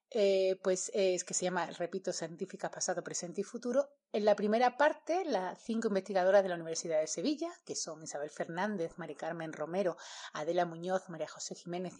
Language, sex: Spanish, female